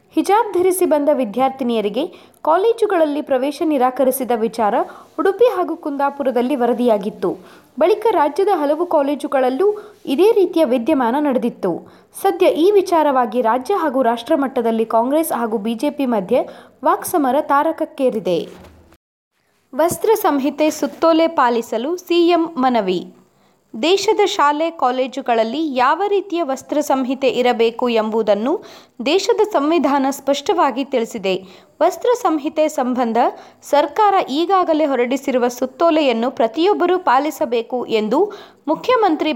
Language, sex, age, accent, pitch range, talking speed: Kannada, female, 20-39, native, 250-335 Hz, 95 wpm